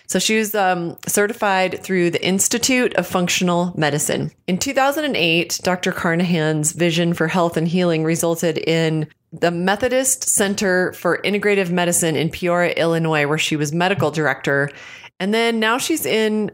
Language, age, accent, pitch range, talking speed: English, 30-49, American, 165-200 Hz, 150 wpm